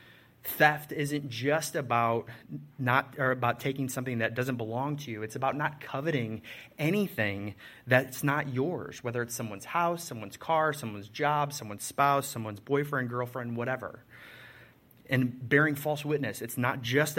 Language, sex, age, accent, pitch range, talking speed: English, male, 30-49, American, 115-140 Hz, 150 wpm